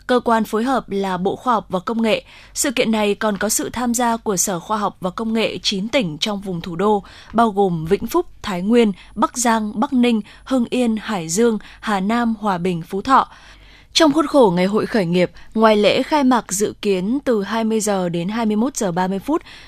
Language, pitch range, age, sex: Vietnamese, 195-235 Hz, 20-39, female